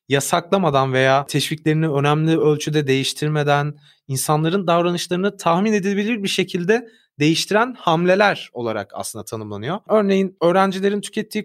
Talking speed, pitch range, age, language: 105 wpm, 150-205 Hz, 30-49, Turkish